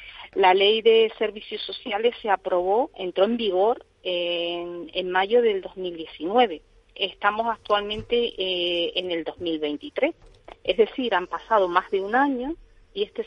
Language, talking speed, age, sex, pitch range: Spanish, 140 wpm, 40-59, female, 180-255 Hz